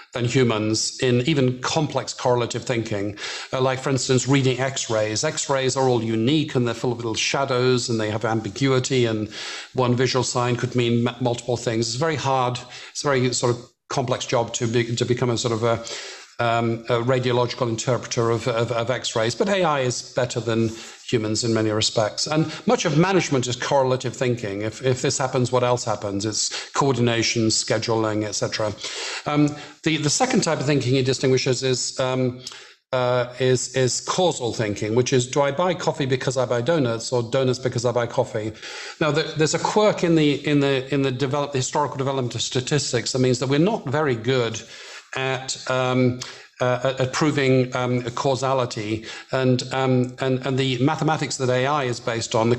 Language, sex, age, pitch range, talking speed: English, male, 50-69, 120-135 Hz, 185 wpm